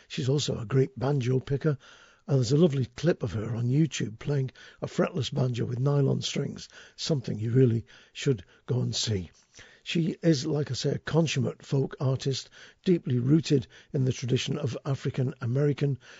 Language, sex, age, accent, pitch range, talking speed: English, male, 50-69, British, 125-155 Hz, 165 wpm